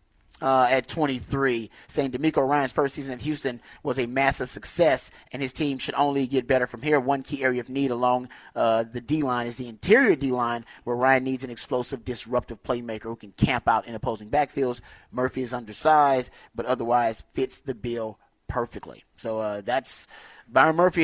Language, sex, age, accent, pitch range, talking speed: English, male, 30-49, American, 120-145 Hz, 185 wpm